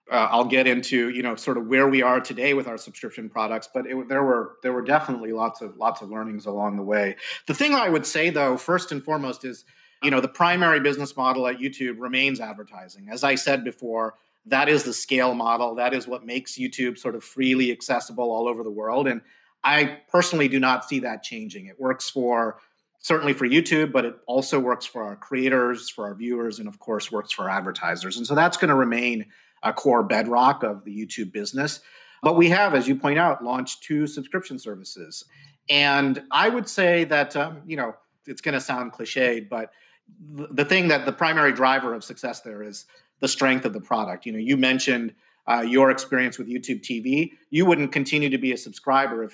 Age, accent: 30-49, American